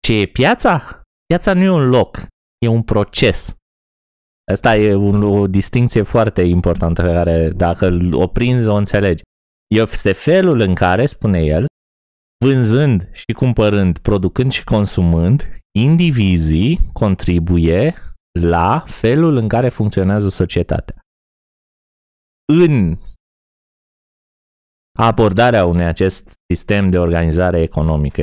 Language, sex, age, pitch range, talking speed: Romanian, male, 20-39, 85-135 Hz, 115 wpm